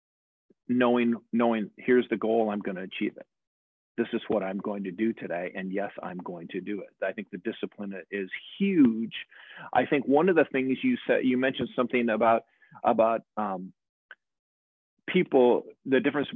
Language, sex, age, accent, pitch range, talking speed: English, male, 40-59, American, 110-135 Hz, 175 wpm